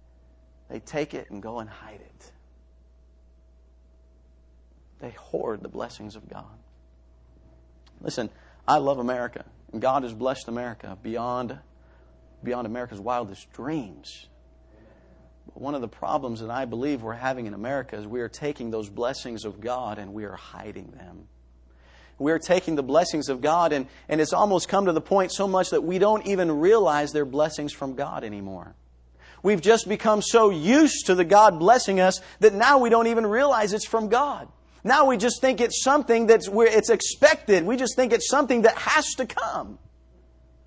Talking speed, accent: 175 wpm, American